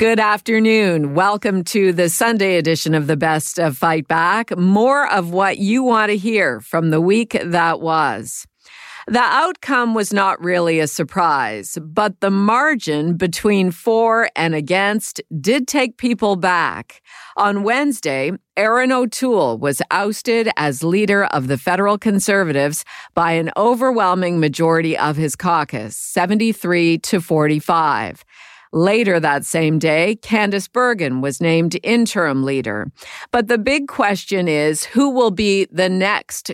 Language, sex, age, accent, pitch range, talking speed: English, female, 50-69, American, 160-215 Hz, 140 wpm